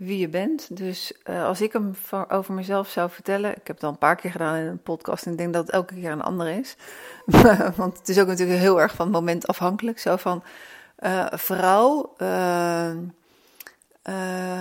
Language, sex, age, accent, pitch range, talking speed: Dutch, female, 40-59, Dutch, 170-195 Hz, 205 wpm